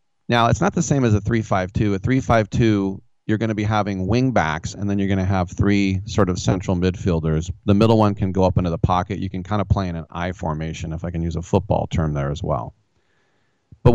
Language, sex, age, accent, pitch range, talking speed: English, male, 30-49, American, 95-115 Hz, 245 wpm